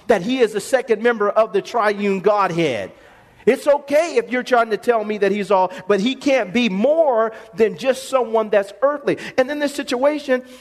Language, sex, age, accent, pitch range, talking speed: English, male, 40-59, American, 200-275 Hz, 200 wpm